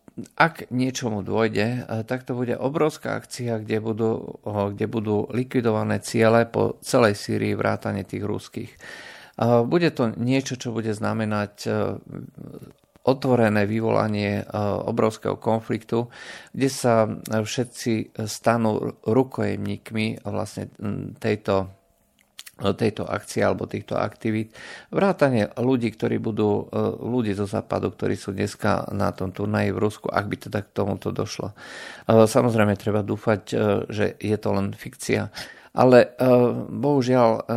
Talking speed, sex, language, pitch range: 120 wpm, male, Slovak, 105-120 Hz